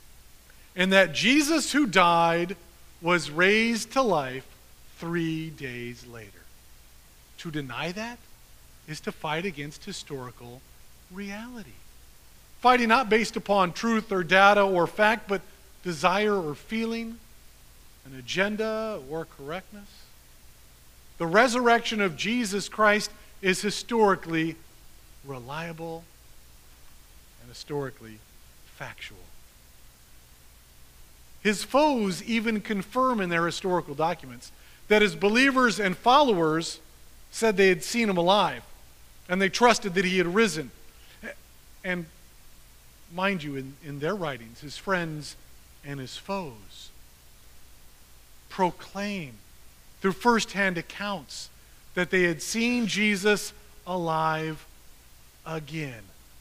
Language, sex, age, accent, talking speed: English, male, 40-59, American, 105 wpm